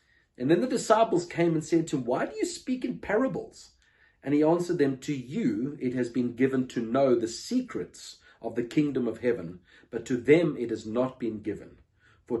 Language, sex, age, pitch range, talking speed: English, male, 40-59, 115-155 Hz, 210 wpm